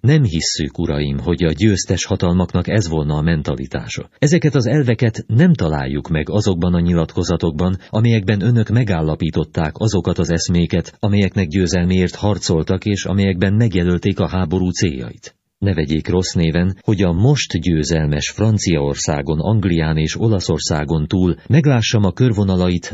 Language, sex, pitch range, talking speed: Hungarian, male, 80-110 Hz, 135 wpm